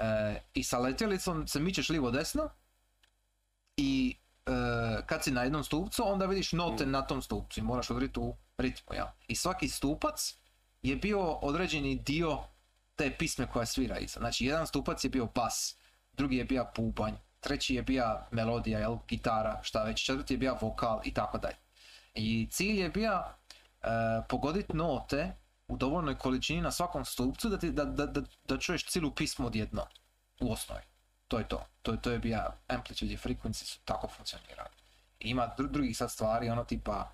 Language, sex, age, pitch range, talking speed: Croatian, male, 30-49, 115-145 Hz, 180 wpm